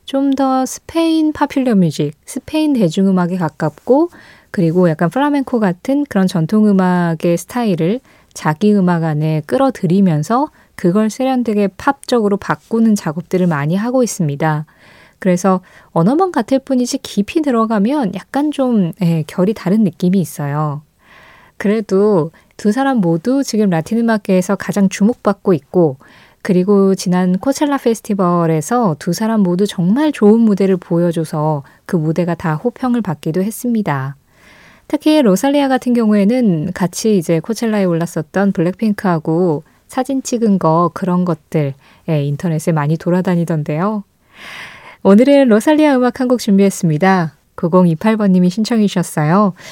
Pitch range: 170-235 Hz